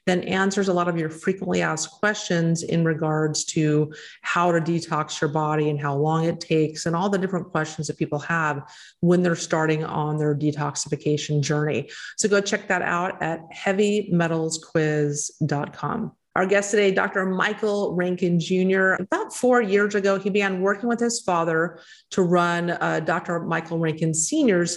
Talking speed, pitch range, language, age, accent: 165 wpm, 155-185 Hz, English, 40-59, American